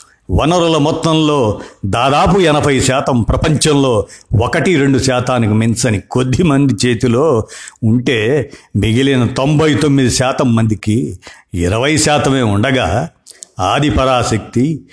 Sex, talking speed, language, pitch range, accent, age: male, 85 wpm, Telugu, 115-145 Hz, native, 50-69